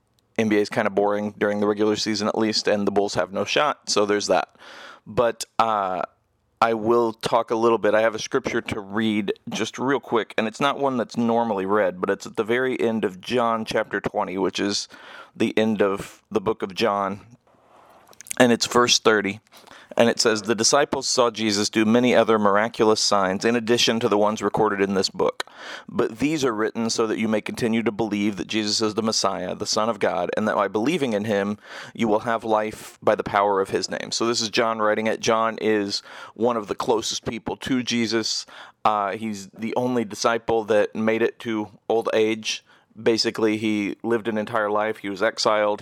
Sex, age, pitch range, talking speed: male, 30-49, 105-115 Hz, 210 wpm